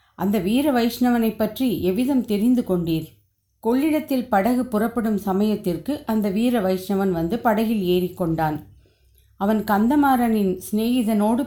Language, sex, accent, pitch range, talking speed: Tamil, female, native, 175-235 Hz, 110 wpm